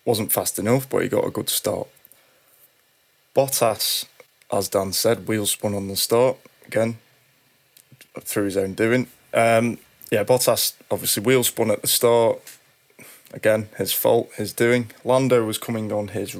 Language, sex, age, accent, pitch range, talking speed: English, male, 20-39, British, 100-125 Hz, 155 wpm